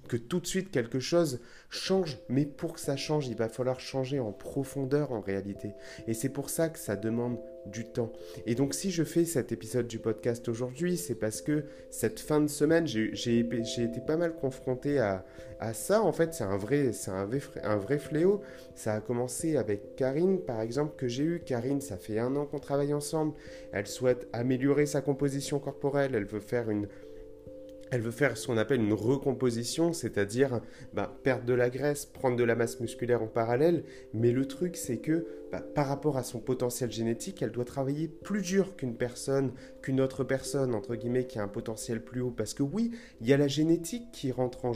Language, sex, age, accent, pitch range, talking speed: French, male, 30-49, French, 115-145 Hz, 210 wpm